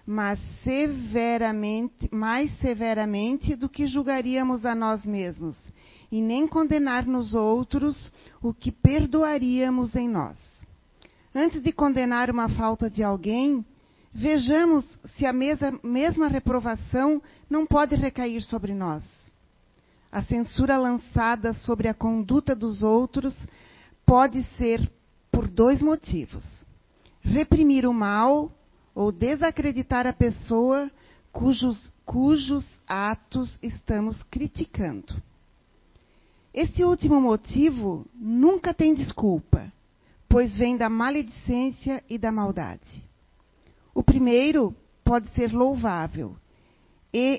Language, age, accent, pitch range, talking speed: Portuguese, 40-59, Brazilian, 225-280 Hz, 105 wpm